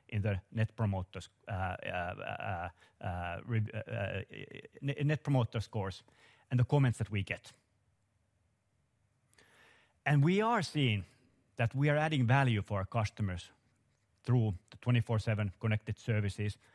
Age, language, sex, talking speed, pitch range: 30-49, English, male, 120 wpm, 100-125 Hz